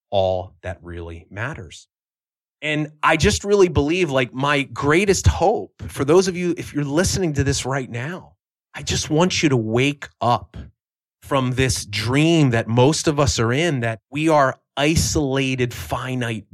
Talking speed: 165 wpm